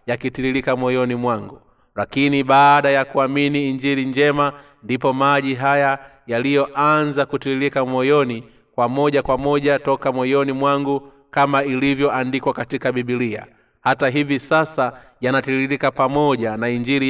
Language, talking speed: Swahili, 115 wpm